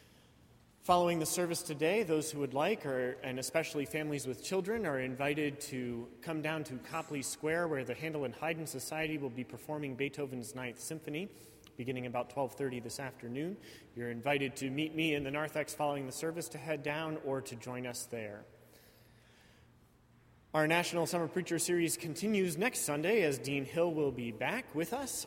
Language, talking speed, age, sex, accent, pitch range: English, 180 wpm, 30-49, male, American, 125-160 Hz